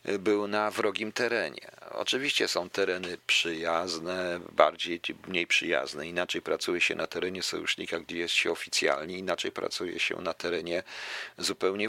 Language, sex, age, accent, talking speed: Polish, male, 40-59, native, 135 wpm